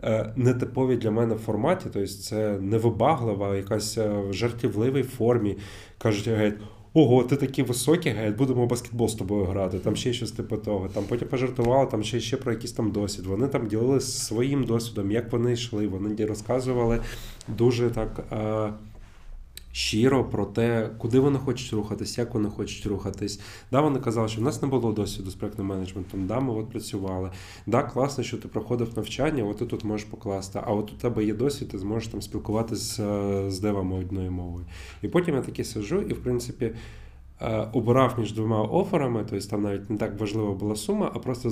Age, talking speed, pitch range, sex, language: 20-39, 180 wpm, 100-120 Hz, male, Ukrainian